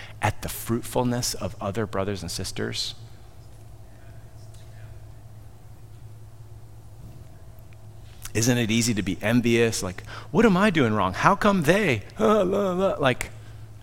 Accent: American